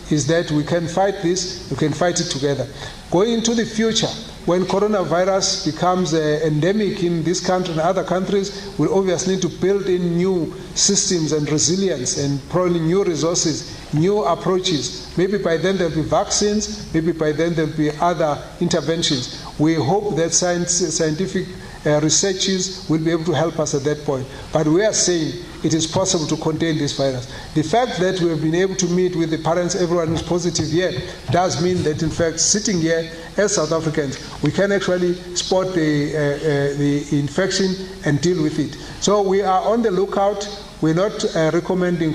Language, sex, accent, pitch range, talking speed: English, male, South African, 155-185 Hz, 185 wpm